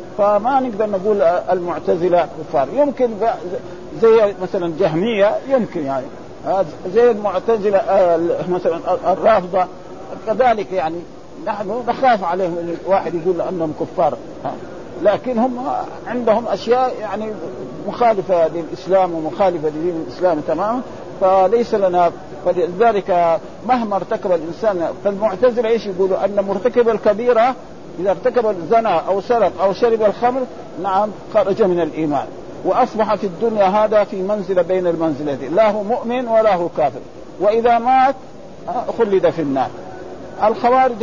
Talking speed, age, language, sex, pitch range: 115 wpm, 50-69, Arabic, male, 180-235 Hz